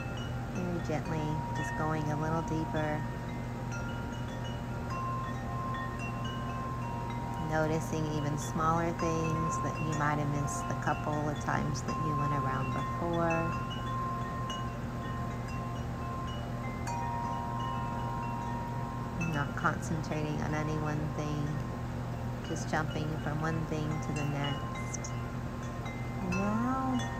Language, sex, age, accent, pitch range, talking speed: English, female, 30-49, American, 115-150 Hz, 90 wpm